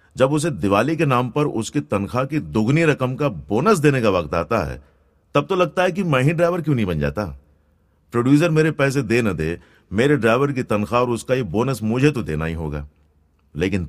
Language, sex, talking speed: Hindi, male, 215 wpm